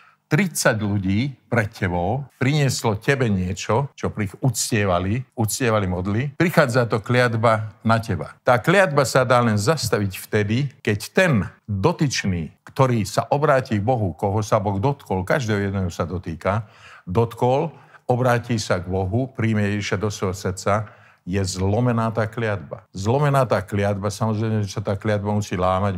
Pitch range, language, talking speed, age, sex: 100-130 Hz, Slovak, 150 wpm, 50-69, male